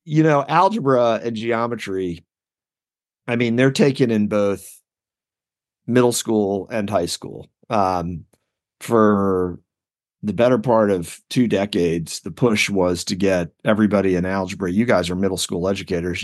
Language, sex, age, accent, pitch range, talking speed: English, male, 40-59, American, 100-125 Hz, 140 wpm